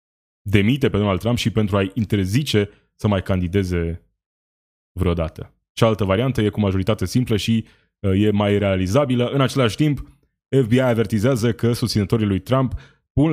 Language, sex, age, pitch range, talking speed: Romanian, male, 20-39, 100-125 Hz, 145 wpm